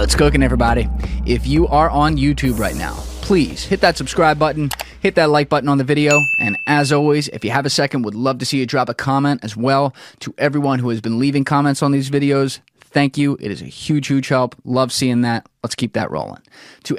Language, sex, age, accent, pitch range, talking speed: English, male, 20-39, American, 110-135 Hz, 235 wpm